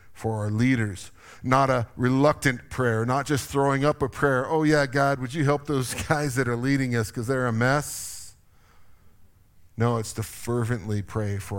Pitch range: 110-140 Hz